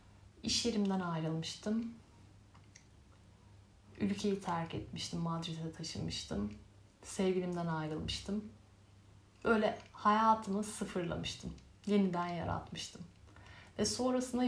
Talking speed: 70 wpm